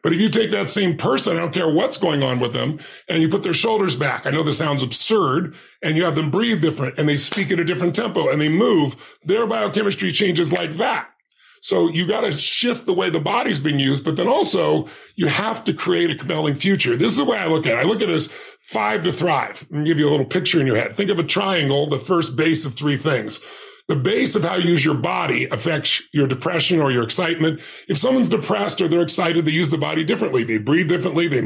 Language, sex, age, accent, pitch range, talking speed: English, female, 40-59, American, 155-185 Hz, 250 wpm